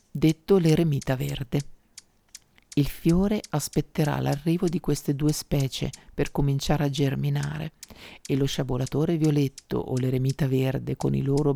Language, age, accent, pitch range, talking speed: Italian, 50-69, native, 135-160 Hz, 130 wpm